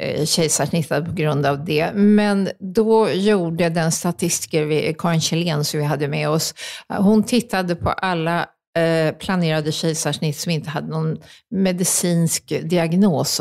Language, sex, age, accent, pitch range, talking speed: Swedish, female, 50-69, native, 160-210 Hz, 135 wpm